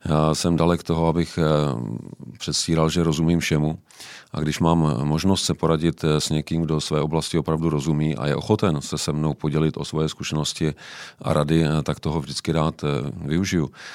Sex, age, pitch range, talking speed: male, 40-59, 75-80 Hz, 170 wpm